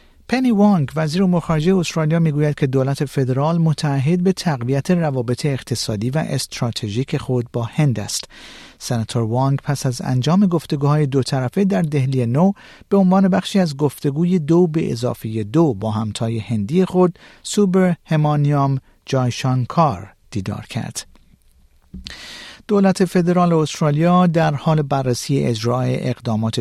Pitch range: 125-170 Hz